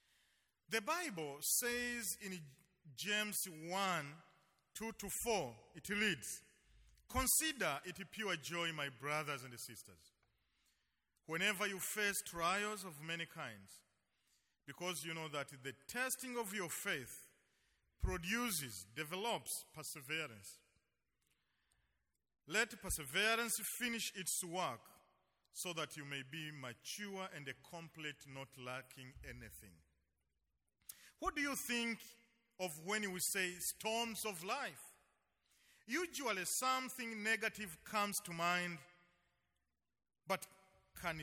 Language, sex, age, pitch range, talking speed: English, male, 40-59, 135-210 Hz, 105 wpm